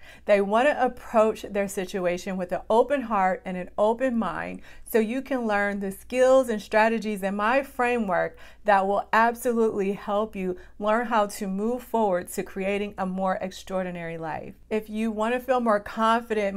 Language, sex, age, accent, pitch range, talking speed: English, female, 40-59, American, 190-225 Hz, 170 wpm